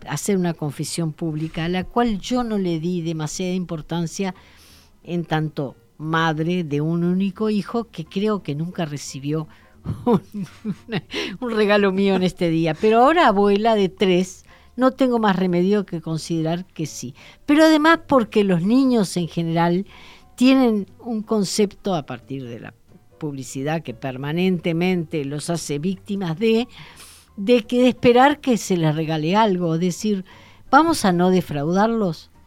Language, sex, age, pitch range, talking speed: Spanish, female, 50-69, 165-220 Hz, 145 wpm